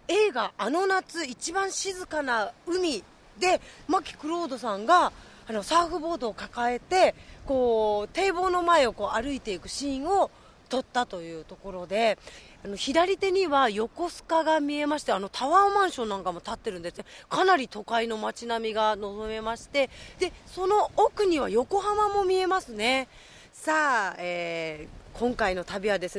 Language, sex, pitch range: Japanese, female, 215-335 Hz